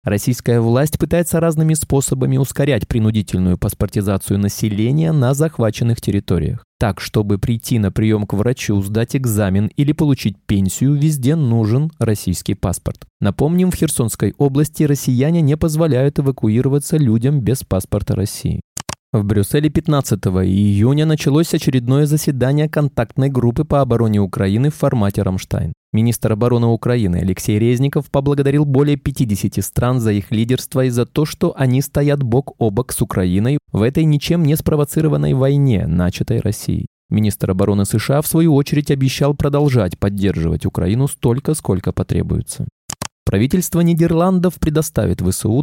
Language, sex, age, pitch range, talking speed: Russian, male, 20-39, 105-145 Hz, 135 wpm